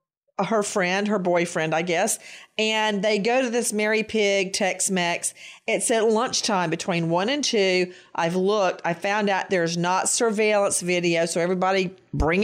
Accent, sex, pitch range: American, female, 180-245 Hz